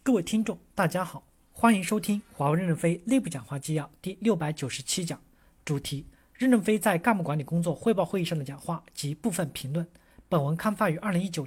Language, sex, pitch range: Chinese, male, 155-205 Hz